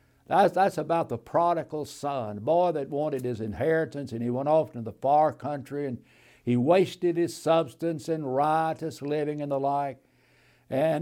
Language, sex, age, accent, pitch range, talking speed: English, male, 60-79, American, 125-165 Hz, 170 wpm